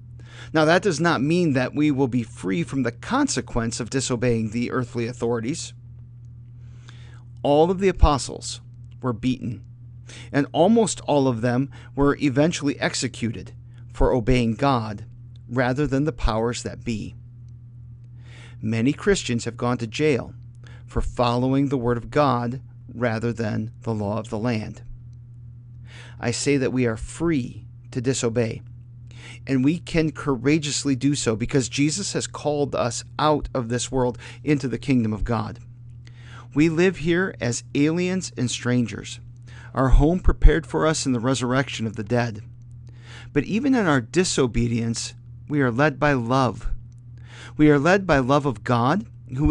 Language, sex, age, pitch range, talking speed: English, male, 50-69, 120-140 Hz, 150 wpm